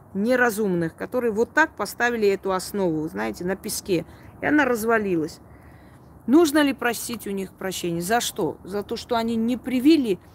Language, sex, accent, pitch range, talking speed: Russian, female, native, 180-255 Hz, 155 wpm